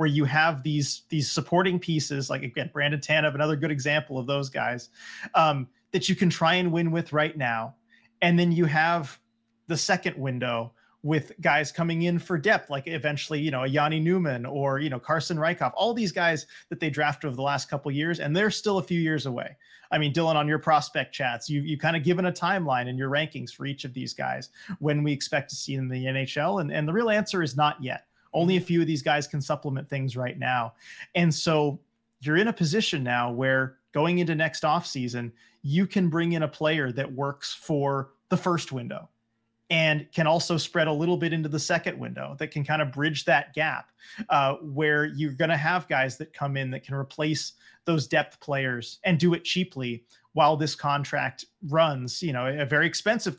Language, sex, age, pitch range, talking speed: English, male, 30-49, 135-165 Hz, 215 wpm